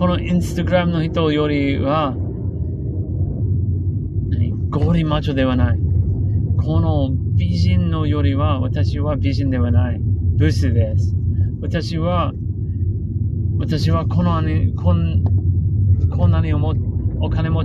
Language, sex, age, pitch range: English, male, 30-49, 95-115 Hz